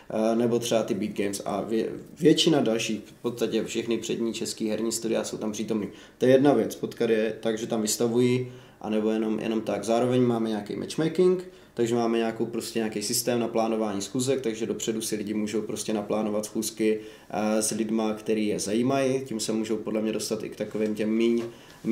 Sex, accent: male, native